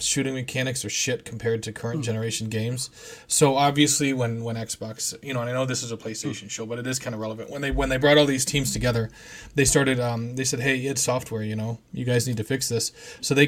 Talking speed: 250 wpm